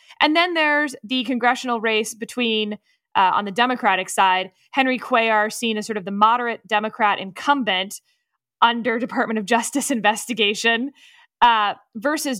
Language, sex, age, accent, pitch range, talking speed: English, female, 20-39, American, 215-270 Hz, 140 wpm